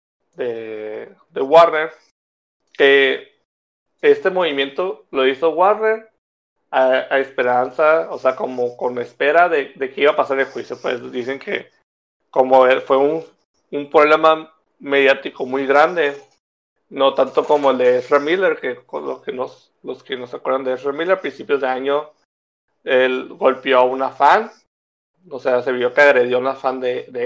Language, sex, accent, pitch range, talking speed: Spanish, male, Mexican, 130-165 Hz, 165 wpm